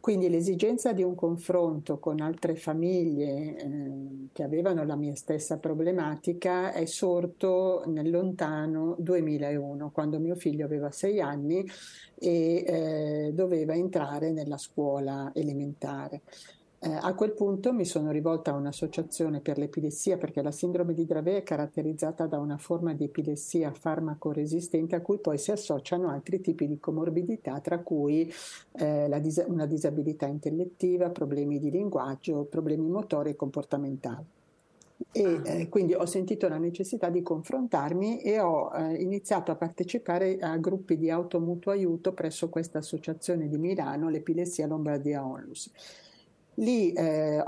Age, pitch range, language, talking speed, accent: 60-79, 150-180 Hz, Italian, 140 wpm, native